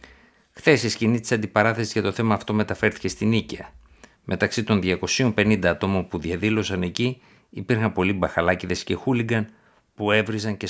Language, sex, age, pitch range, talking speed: Greek, male, 50-69, 90-120 Hz, 150 wpm